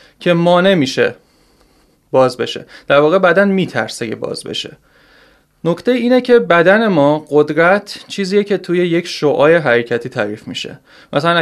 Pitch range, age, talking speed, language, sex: 140-180 Hz, 30-49, 140 wpm, Persian, male